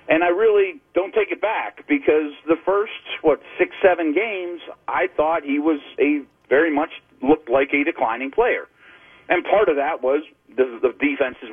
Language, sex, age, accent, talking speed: English, male, 40-59, American, 175 wpm